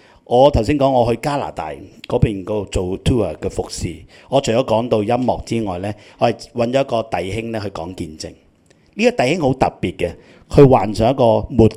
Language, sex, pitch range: Chinese, male, 95-130 Hz